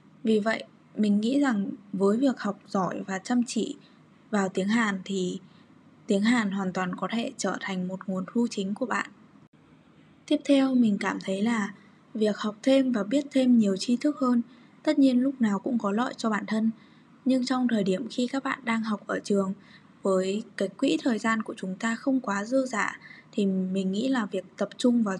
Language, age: Vietnamese, 10-29